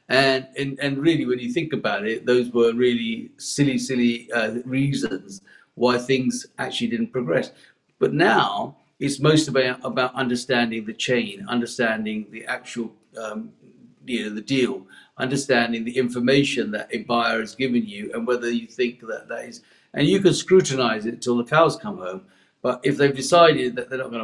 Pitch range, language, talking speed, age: 115-135 Hz, English, 180 wpm, 50-69